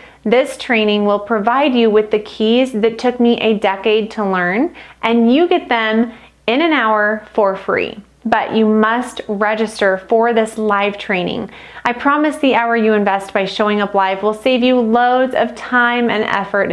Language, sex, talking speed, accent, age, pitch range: English, female, 180 wpm, American, 30-49, 215-265 Hz